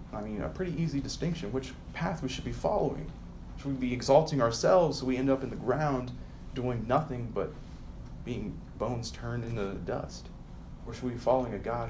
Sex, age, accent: male, 30-49, American